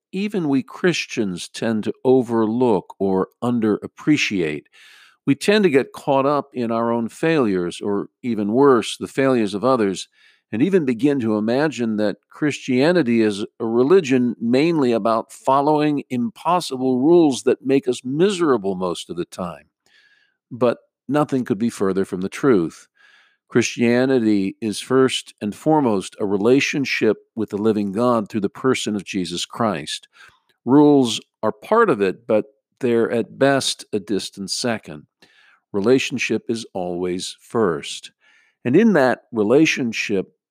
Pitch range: 105-145 Hz